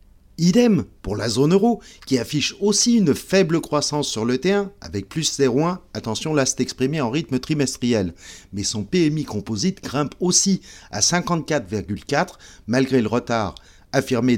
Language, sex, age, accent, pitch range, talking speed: French, male, 50-69, French, 110-175 Hz, 150 wpm